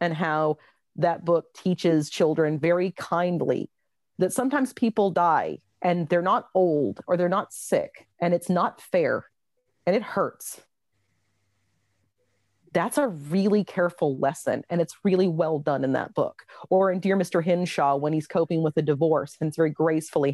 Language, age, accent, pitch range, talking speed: English, 40-59, American, 150-185 Hz, 160 wpm